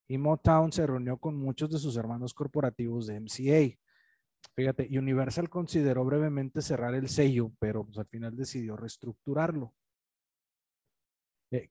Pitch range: 120-155 Hz